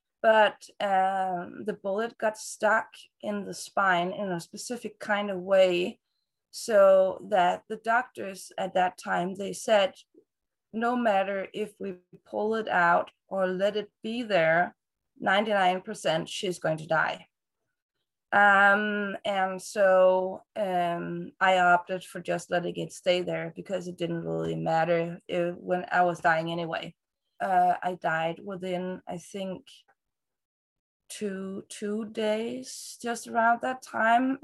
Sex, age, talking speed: female, 20-39, 130 wpm